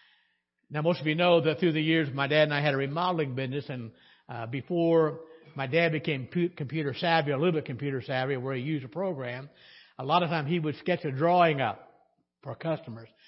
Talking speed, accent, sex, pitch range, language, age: 210 wpm, American, male, 145-185 Hz, English, 60-79